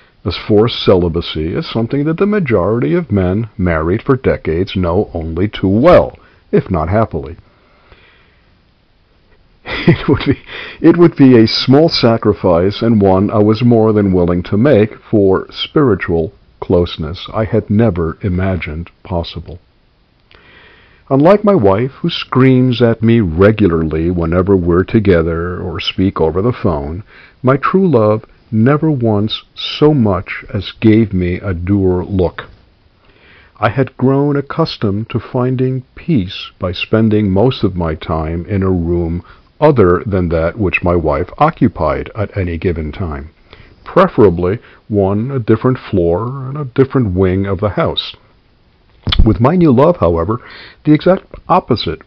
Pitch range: 90-125 Hz